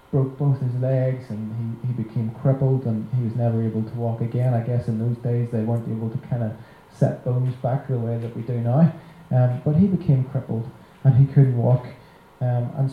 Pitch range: 115-140 Hz